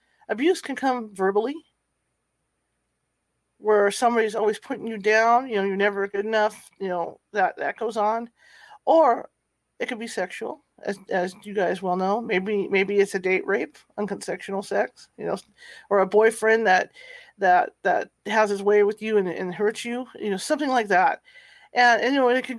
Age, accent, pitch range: 40-59, American, 195-240 Hz